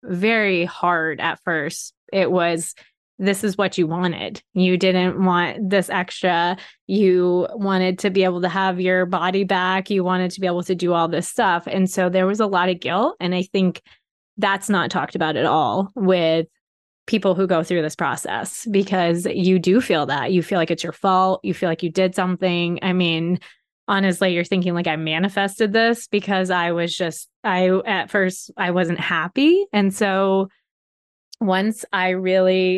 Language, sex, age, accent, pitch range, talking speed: English, female, 20-39, American, 175-195 Hz, 185 wpm